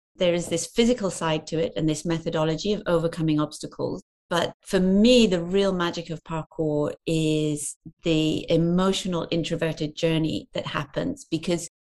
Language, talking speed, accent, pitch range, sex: English, 145 wpm, British, 160-190 Hz, female